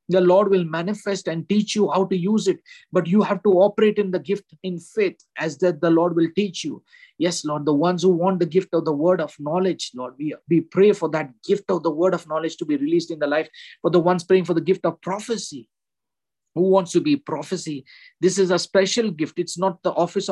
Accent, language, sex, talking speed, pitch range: Indian, English, male, 240 wpm, 155-190 Hz